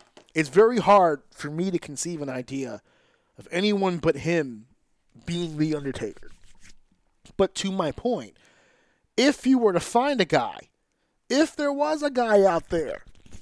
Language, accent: English, American